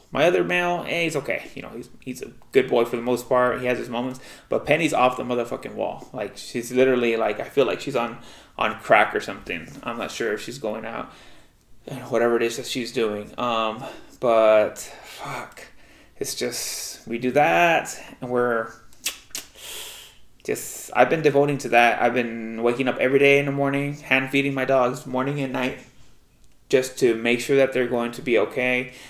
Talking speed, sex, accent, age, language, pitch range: 200 wpm, male, American, 20-39, English, 120-140 Hz